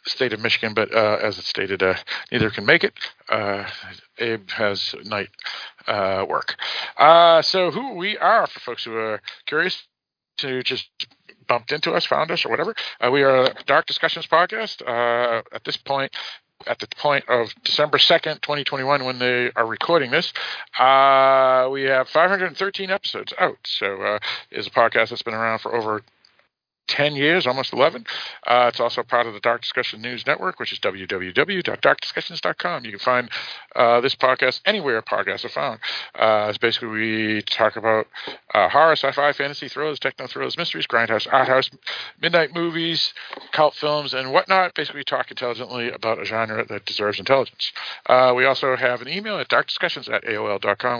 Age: 50-69